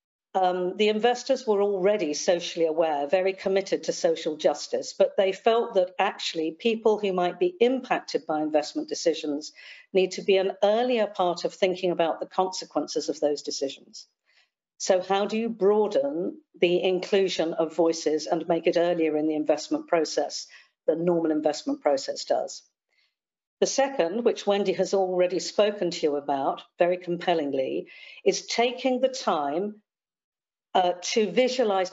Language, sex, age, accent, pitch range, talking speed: English, female, 50-69, British, 165-210 Hz, 150 wpm